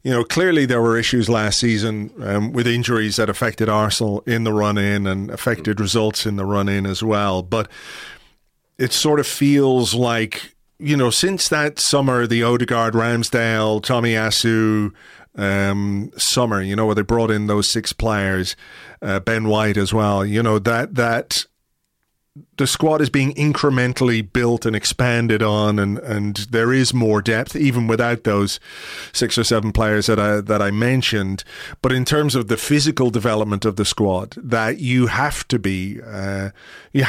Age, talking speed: 40-59, 170 wpm